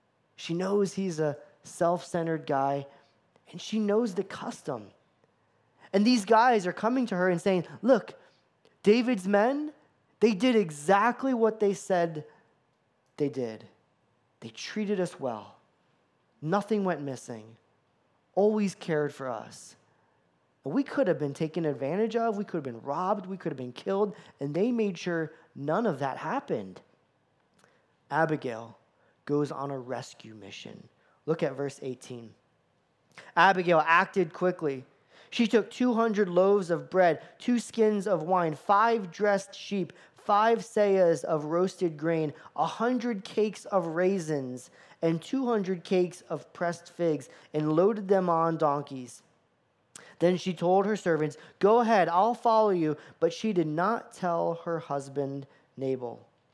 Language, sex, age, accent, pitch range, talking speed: English, male, 20-39, American, 145-205 Hz, 140 wpm